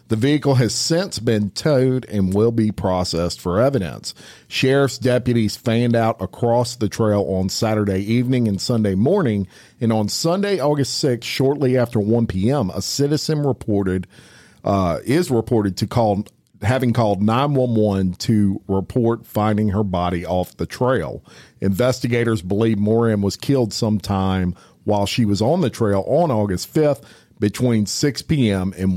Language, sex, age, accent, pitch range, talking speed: English, male, 50-69, American, 100-130 Hz, 155 wpm